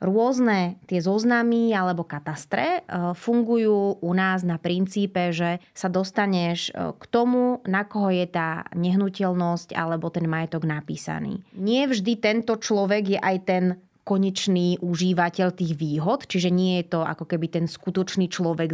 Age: 20-39